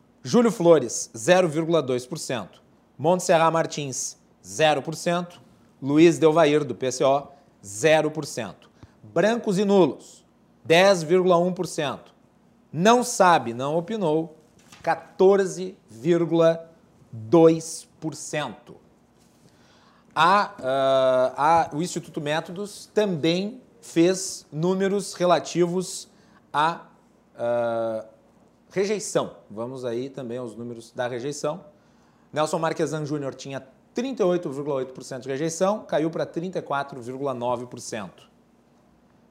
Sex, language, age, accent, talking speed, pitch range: male, Portuguese, 40-59, Brazilian, 70 wpm, 135-175 Hz